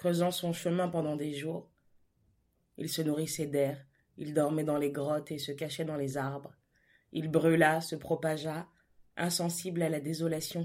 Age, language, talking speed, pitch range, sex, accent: 20-39, French, 165 wpm, 150-175 Hz, female, French